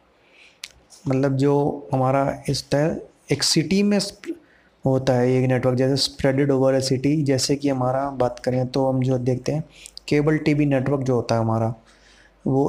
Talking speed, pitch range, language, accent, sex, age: 165 wpm, 130-145 Hz, Hindi, native, male, 20-39